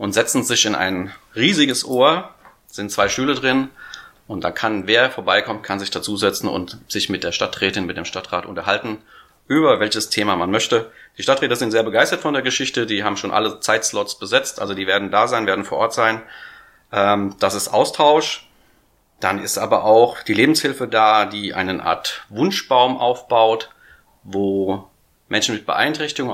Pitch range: 100-125 Hz